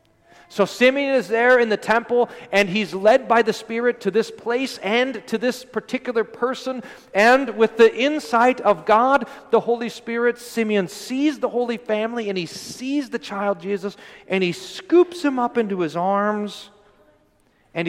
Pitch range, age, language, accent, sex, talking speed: 130-225 Hz, 40-59, English, American, male, 170 wpm